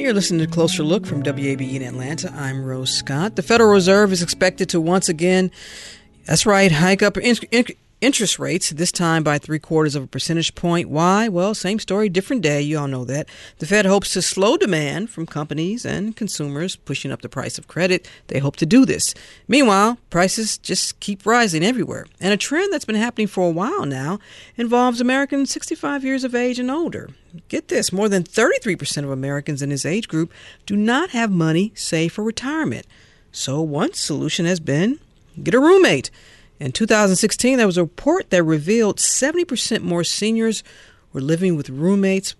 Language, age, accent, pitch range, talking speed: English, 50-69, American, 160-230 Hz, 190 wpm